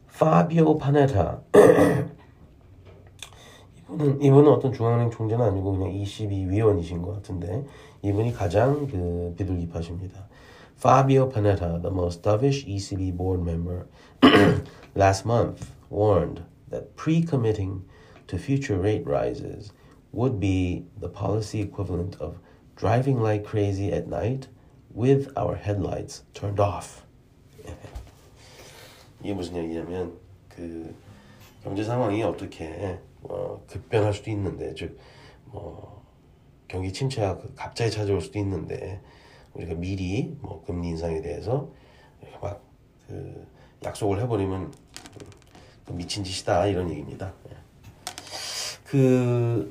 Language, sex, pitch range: Korean, male, 95-125 Hz